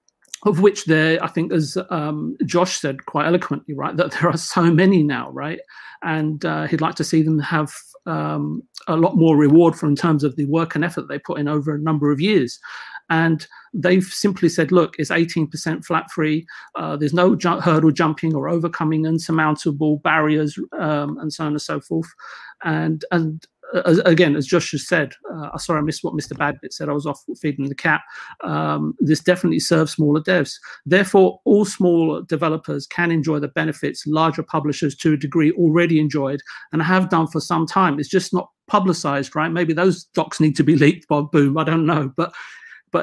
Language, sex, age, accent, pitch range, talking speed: English, male, 40-59, British, 150-175 Hz, 200 wpm